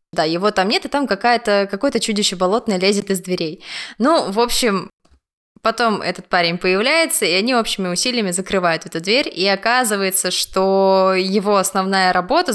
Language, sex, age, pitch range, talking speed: Russian, female, 20-39, 185-220 Hz, 155 wpm